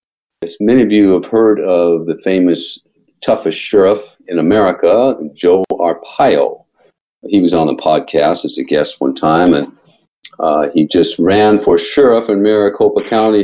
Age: 50-69